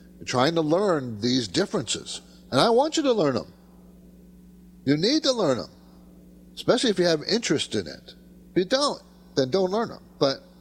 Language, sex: English, male